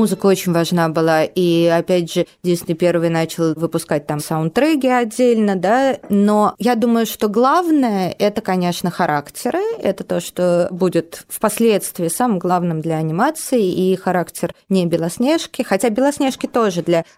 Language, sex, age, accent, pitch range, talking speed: Russian, female, 20-39, native, 165-215 Hz, 145 wpm